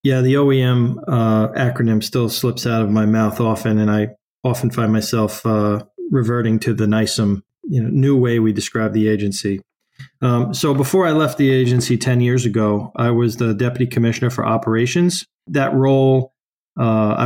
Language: English